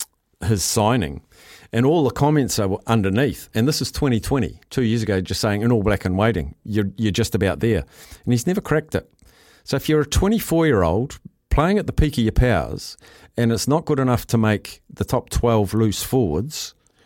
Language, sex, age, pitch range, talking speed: English, male, 50-69, 95-125 Hz, 205 wpm